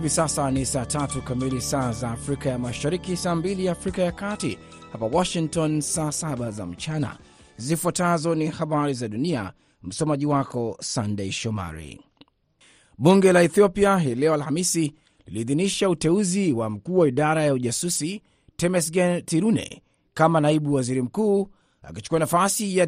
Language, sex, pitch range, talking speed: Swahili, male, 135-175 Hz, 135 wpm